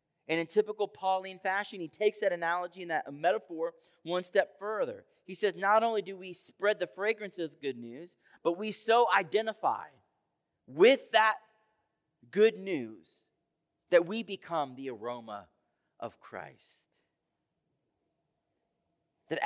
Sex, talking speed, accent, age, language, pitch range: male, 135 wpm, American, 30-49, English, 150-205 Hz